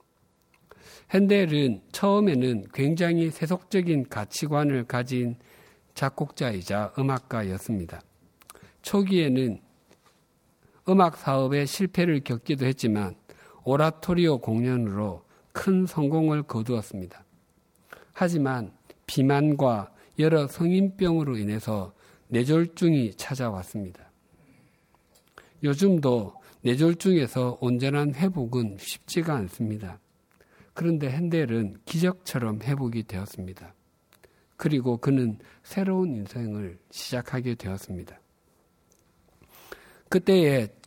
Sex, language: male, Korean